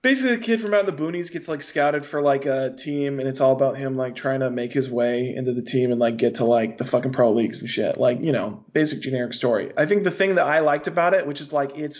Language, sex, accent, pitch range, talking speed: English, male, American, 125-155 Hz, 295 wpm